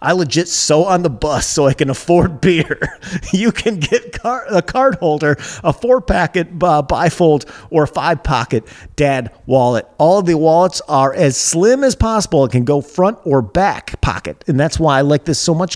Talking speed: 190 wpm